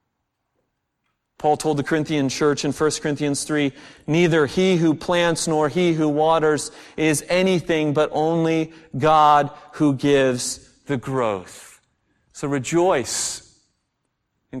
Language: English